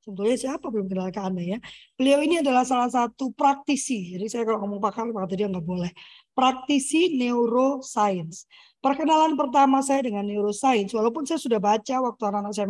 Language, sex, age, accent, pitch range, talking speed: Indonesian, female, 20-39, native, 210-275 Hz, 165 wpm